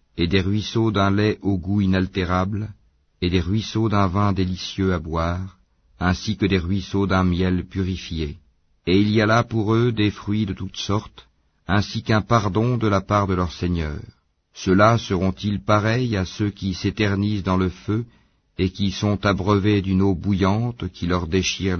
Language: French